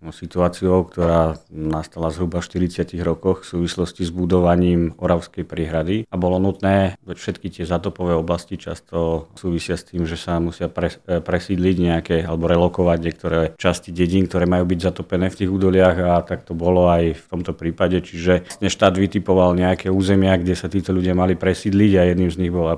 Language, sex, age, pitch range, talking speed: Slovak, male, 40-59, 85-95 Hz, 175 wpm